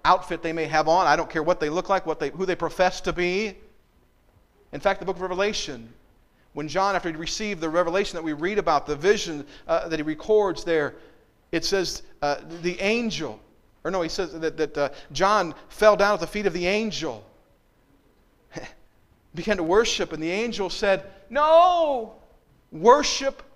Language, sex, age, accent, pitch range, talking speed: English, male, 40-59, American, 155-200 Hz, 185 wpm